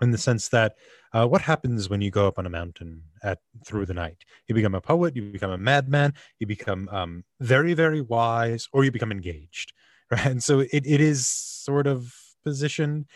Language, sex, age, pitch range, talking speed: English, male, 20-39, 100-135 Hz, 205 wpm